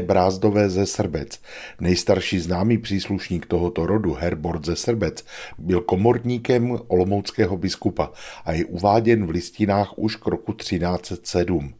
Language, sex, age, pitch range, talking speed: Czech, male, 50-69, 90-110 Hz, 120 wpm